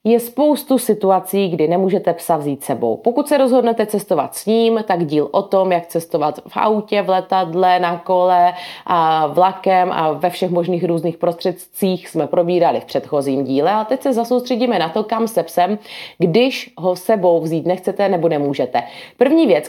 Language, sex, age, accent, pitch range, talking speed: Czech, female, 30-49, native, 170-200 Hz, 175 wpm